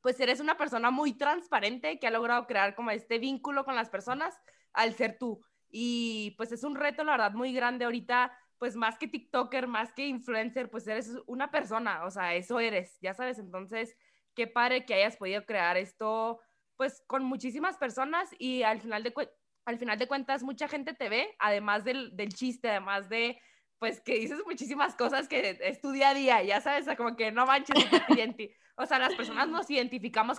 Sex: female